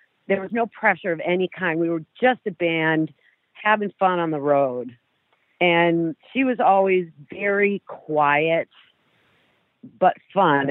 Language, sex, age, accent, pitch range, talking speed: English, female, 50-69, American, 150-185 Hz, 140 wpm